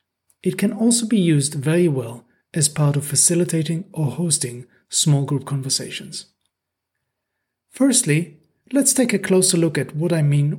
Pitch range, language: 145-190 Hz, English